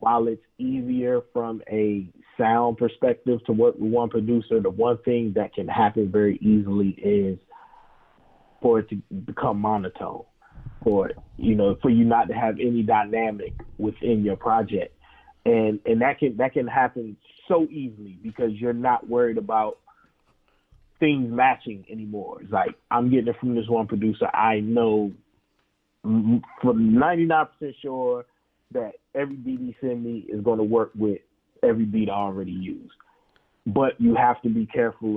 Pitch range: 105-120 Hz